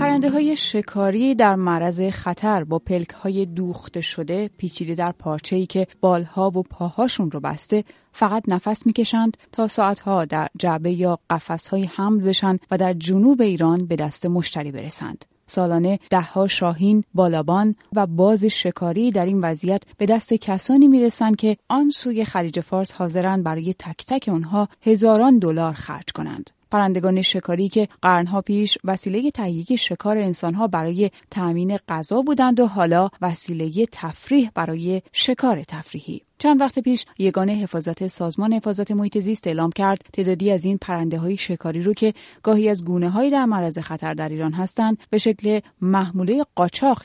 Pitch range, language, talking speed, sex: 175-215 Hz, Persian, 155 wpm, female